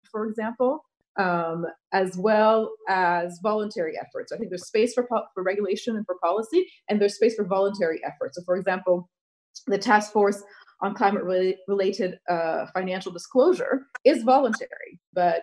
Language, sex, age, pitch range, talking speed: English, female, 30-49, 180-230 Hz, 165 wpm